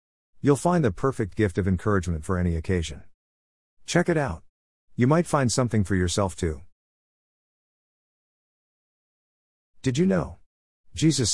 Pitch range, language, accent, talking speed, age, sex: 85-120 Hz, English, American, 125 wpm, 50-69, male